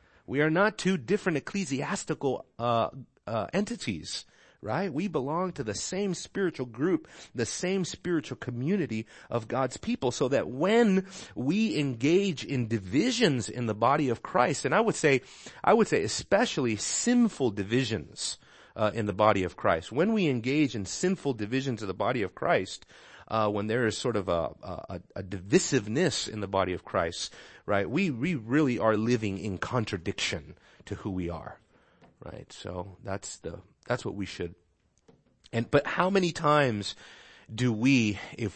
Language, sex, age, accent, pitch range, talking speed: English, male, 30-49, American, 105-150 Hz, 165 wpm